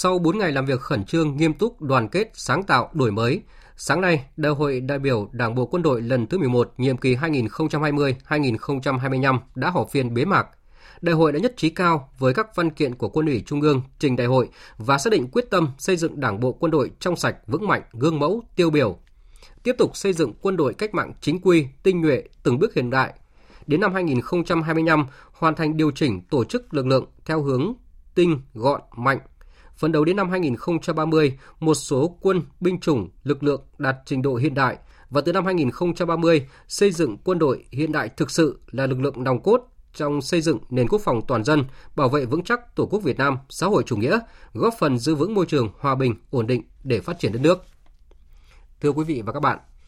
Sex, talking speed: male, 215 wpm